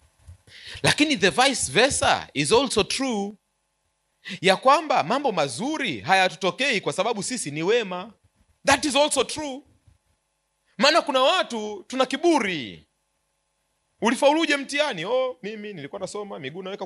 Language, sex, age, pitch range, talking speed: Swahili, male, 30-49, 190-320 Hz, 125 wpm